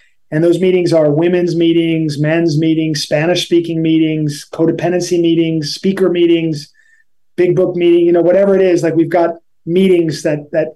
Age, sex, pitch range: 30-49, male, 150-175 Hz